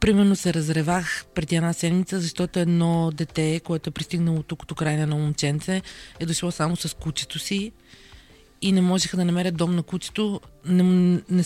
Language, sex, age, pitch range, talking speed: Bulgarian, female, 30-49, 155-180 Hz, 175 wpm